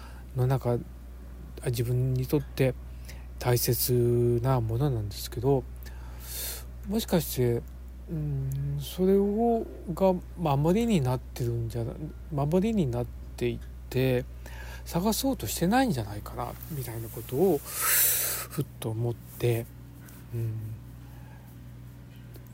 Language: Japanese